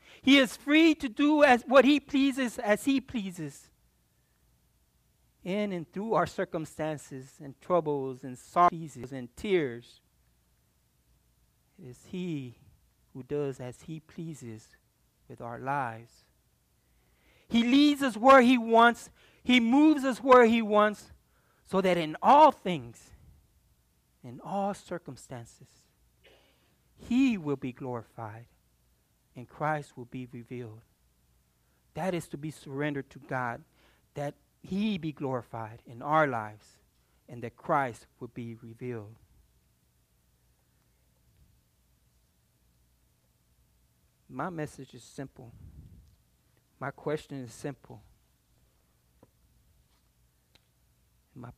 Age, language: 60-79, English